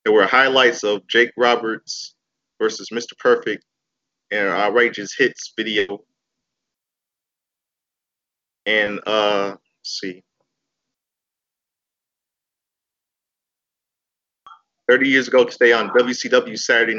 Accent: American